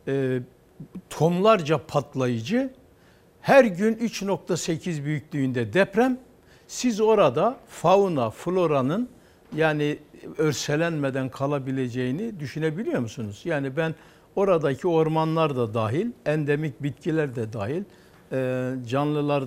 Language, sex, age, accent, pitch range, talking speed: Turkish, male, 60-79, native, 130-200 Hz, 85 wpm